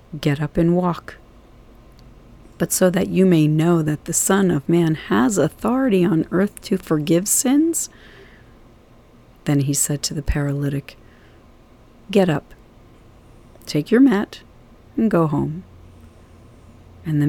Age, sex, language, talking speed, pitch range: 40-59, female, English, 130 wpm, 120-180 Hz